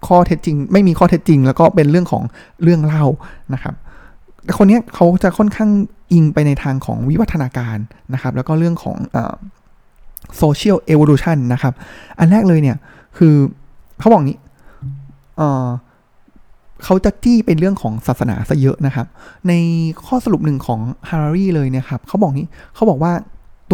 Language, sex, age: Thai, male, 20-39